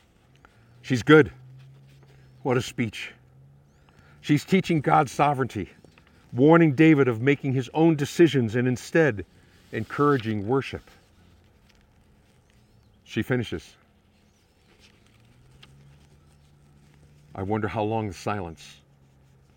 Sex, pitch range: male, 90-135 Hz